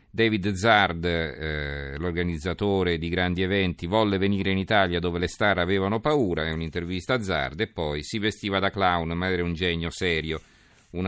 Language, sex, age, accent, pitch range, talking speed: Italian, male, 40-59, native, 85-105 Hz, 175 wpm